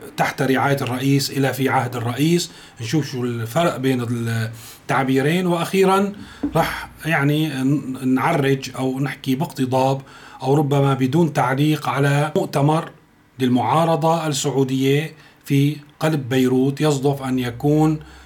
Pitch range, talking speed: 130-155 Hz, 110 wpm